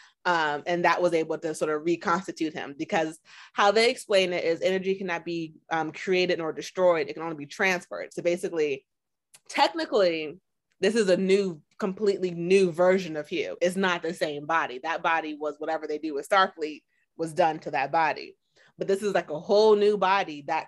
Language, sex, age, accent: English, female, 20-39, American